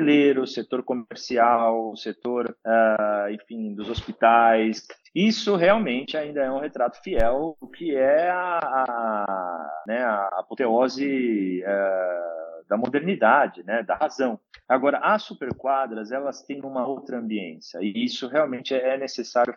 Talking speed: 130 wpm